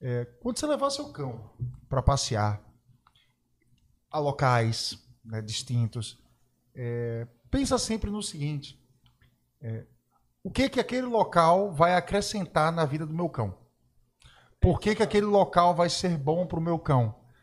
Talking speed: 145 wpm